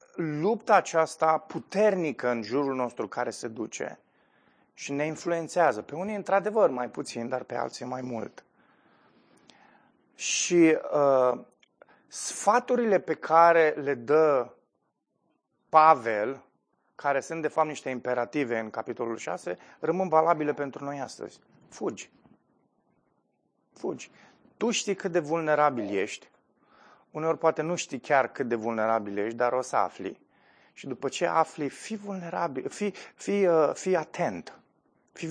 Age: 30-49